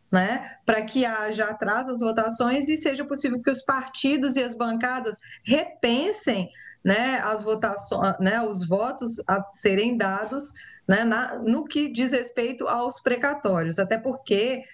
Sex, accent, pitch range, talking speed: female, Brazilian, 205-255 Hz, 145 wpm